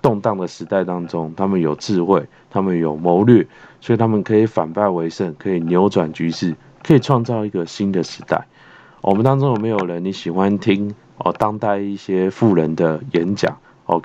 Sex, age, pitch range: male, 20-39, 85-110 Hz